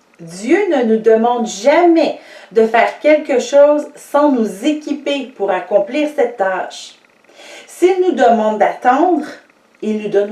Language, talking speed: English, 135 wpm